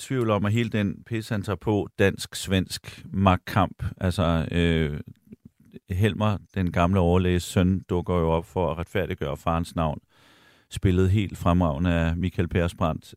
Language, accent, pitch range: Danish, native, 85-100 Hz